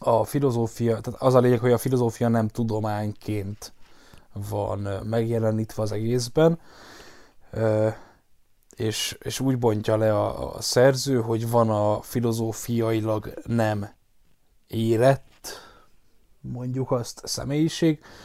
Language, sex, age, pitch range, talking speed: Hungarian, male, 10-29, 110-130 Hz, 105 wpm